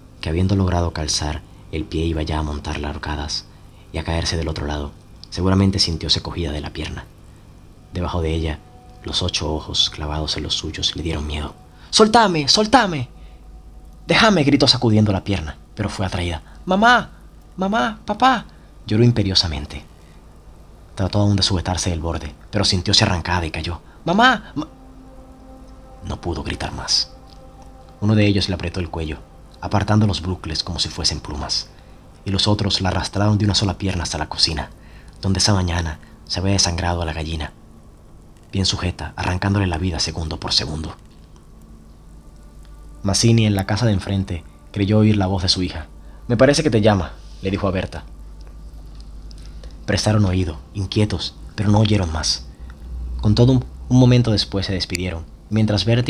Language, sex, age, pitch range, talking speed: Spanish, male, 30-49, 80-100 Hz, 160 wpm